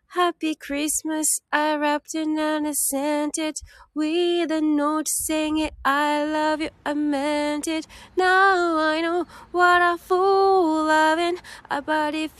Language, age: Japanese, 10-29